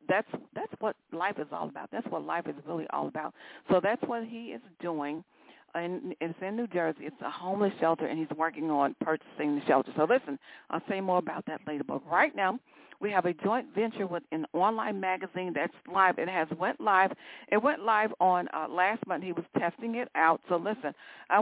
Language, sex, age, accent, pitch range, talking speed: English, female, 50-69, American, 170-220 Hz, 215 wpm